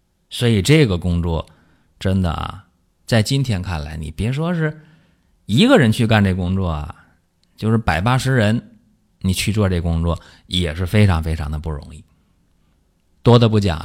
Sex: male